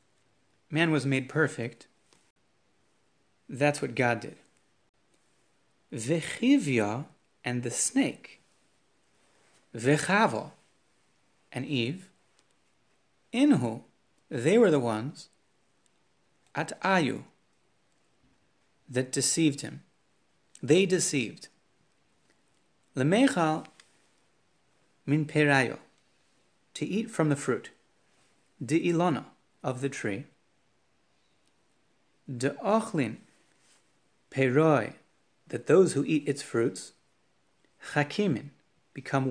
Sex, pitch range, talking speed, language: male, 130-165 Hz, 75 wpm, English